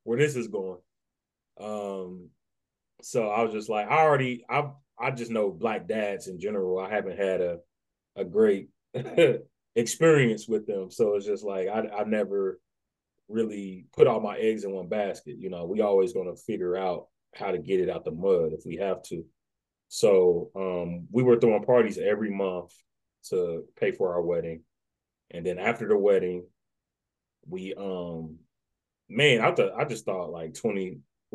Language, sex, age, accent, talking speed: English, male, 30-49, American, 175 wpm